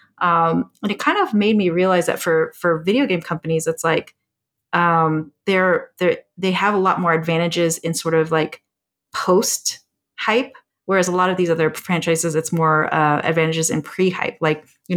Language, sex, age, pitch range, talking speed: English, female, 30-49, 160-185 Hz, 185 wpm